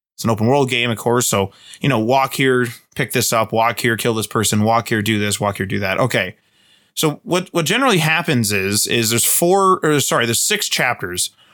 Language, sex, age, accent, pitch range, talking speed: English, male, 20-39, American, 115-160 Hz, 225 wpm